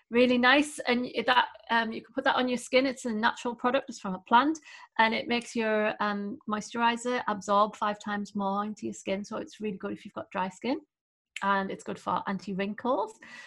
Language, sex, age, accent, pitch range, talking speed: English, female, 30-49, British, 200-245 Hz, 215 wpm